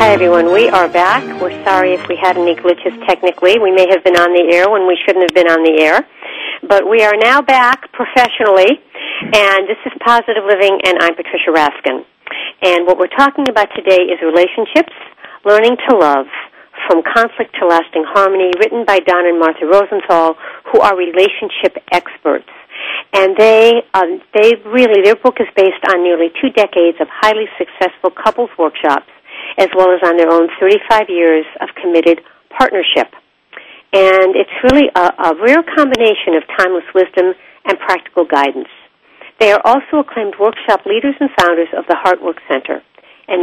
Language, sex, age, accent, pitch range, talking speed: English, female, 60-79, American, 175-220 Hz, 170 wpm